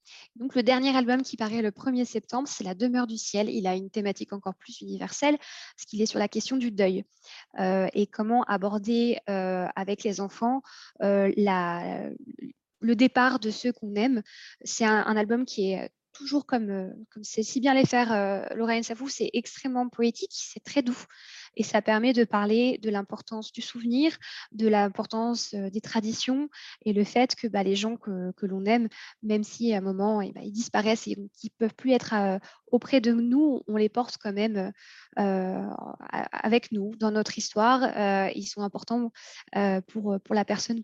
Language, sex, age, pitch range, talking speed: French, female, 10-29, 205-245 Hz, 190 wpm